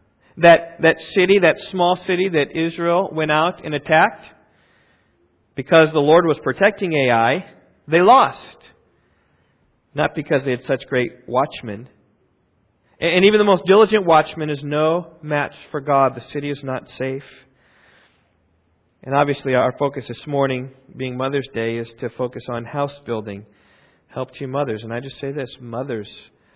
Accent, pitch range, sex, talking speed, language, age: American, 115-155 Hz, male, 150 wpm, English, 40-59